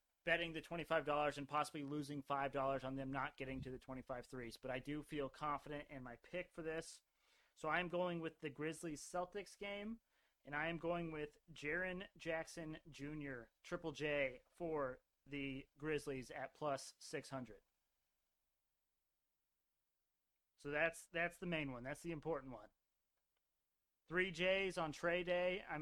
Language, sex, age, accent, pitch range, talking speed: English, male, 30-49, American, 135-165 Hz, 150 wpm